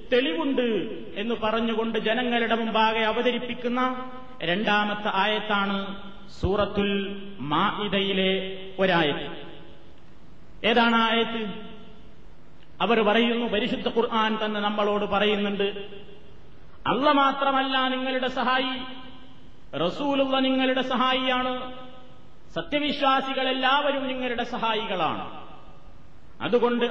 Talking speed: 70 wpm